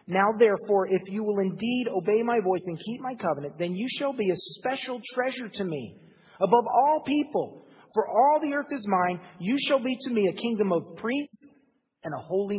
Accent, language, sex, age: American, English, male, 30-49